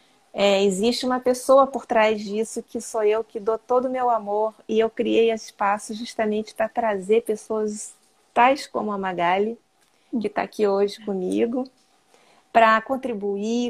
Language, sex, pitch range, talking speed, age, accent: Portuguese, female, 200-235 Hz, 155 wpm, 30-49, Brazilian